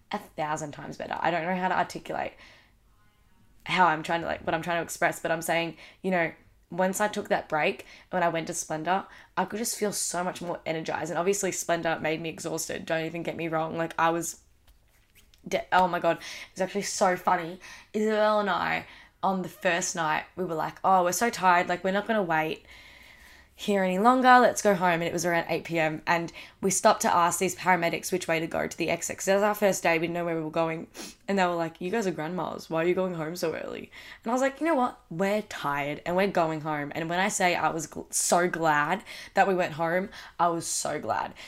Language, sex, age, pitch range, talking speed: English, female, 10-29, 165-190 Hz, 240 wpm